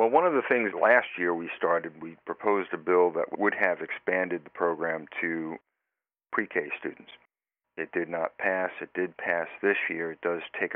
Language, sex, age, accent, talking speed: English, male, 50-69, American, 190 wpm